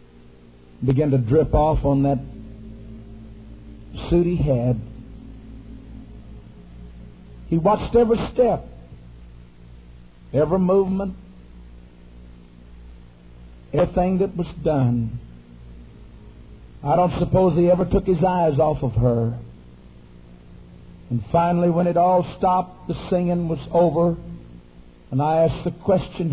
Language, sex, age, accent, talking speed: English, male, 60-79, American, 105 wpm